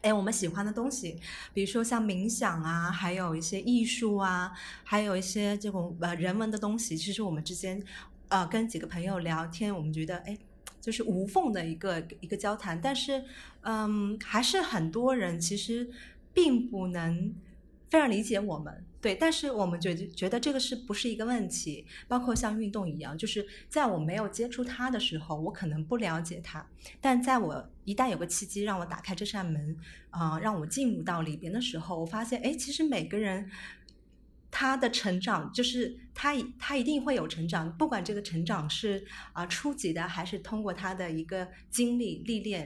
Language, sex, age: Chinese, female, 30-49